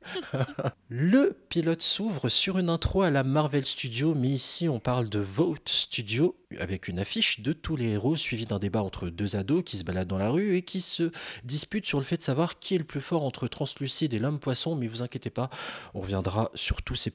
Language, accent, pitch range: French, French, 110-150 Hz